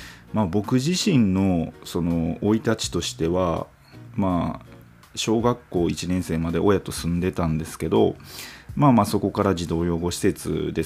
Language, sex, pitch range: Japanese, male, 80-120 Hz